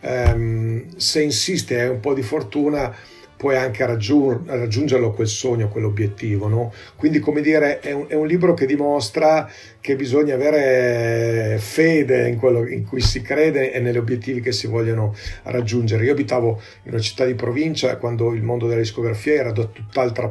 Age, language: 40-59, Italian